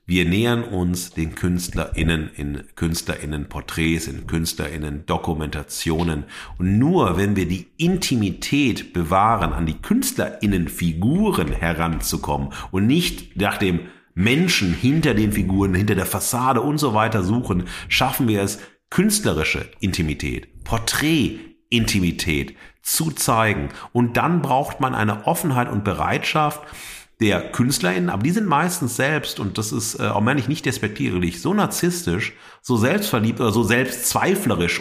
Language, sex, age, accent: German, male, 50-69, German